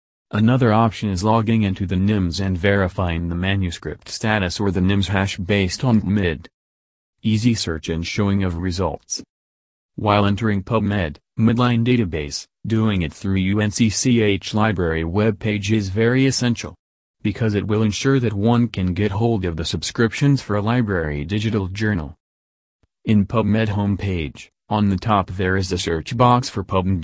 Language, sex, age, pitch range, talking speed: English, male, 40-59, 90-110 Hz, 160 wpm